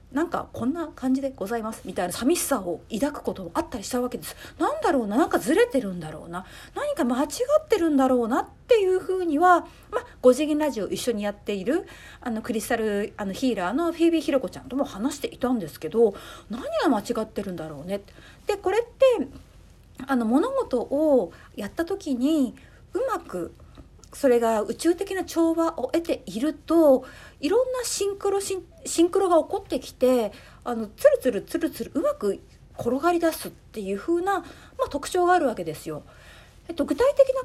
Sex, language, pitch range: female, Japanese, 230-345 Hz